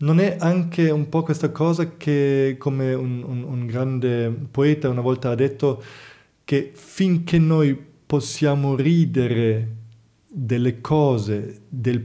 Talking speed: 130 wpm